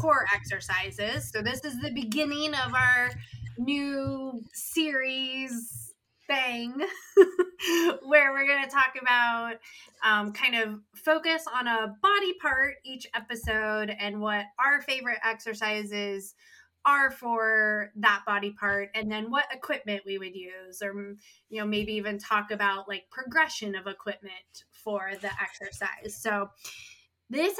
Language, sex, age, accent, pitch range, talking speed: English, female, 20-39, American, 210-270 Hz, 135 wpm